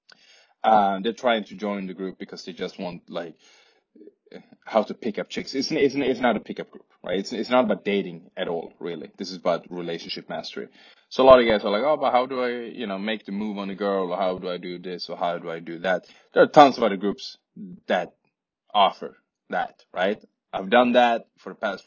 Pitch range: 100-145 Hz